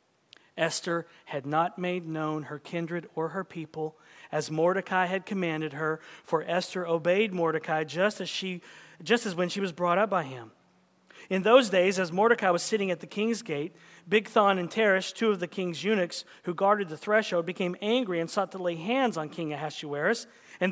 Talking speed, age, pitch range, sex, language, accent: 190 wpm, 40-59, 170-220 Hz, male, English, American